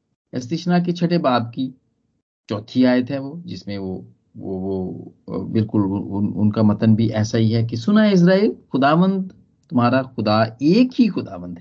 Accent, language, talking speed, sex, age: native, Hindi, 140 wpm, male, 50-69